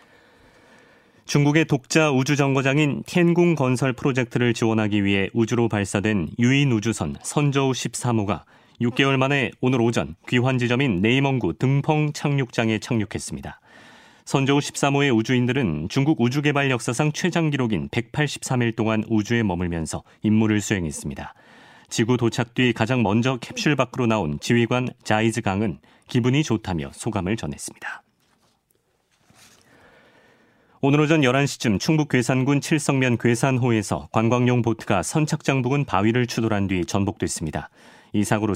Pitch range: 105-140 Hz